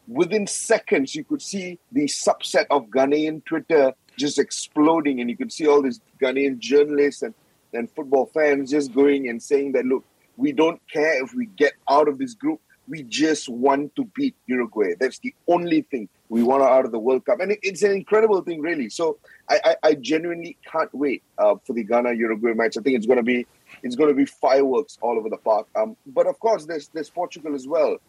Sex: male